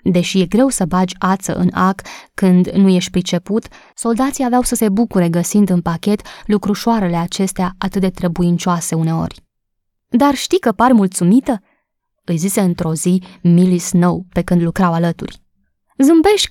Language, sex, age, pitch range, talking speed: Romanian, female, 20-39, 175-225 Hz, 155 wpm